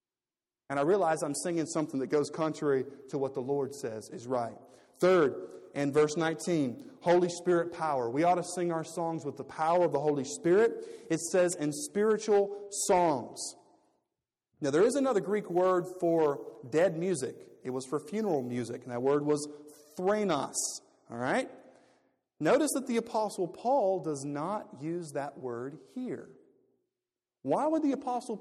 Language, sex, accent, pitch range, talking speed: English, male, American, 135-190 Hz, 165 wpm